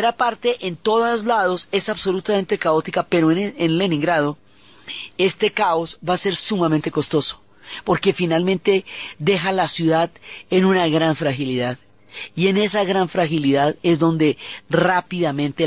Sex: female